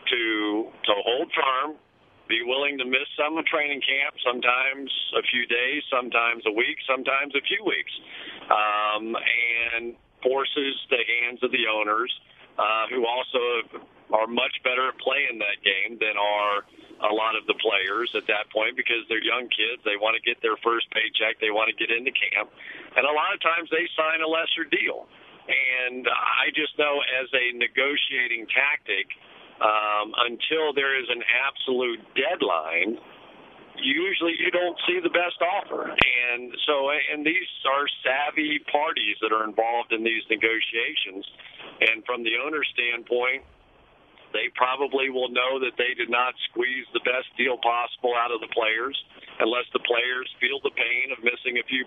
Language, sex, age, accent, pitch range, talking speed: English, male, 50-69, American, 115-150 Hz, 170 wpm